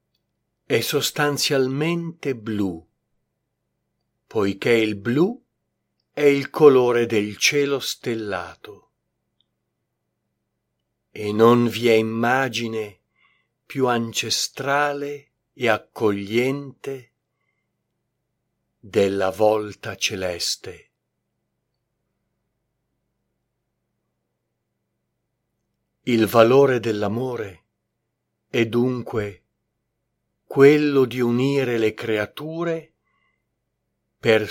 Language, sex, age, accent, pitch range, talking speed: Italian, male, 50-69, native, 105-135 Hz, 60 wpm